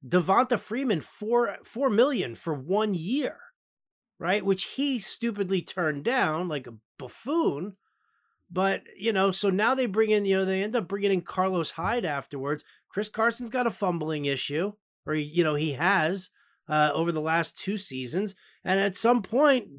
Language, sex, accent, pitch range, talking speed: English, male, American, 155-205 Hz, 170 wpm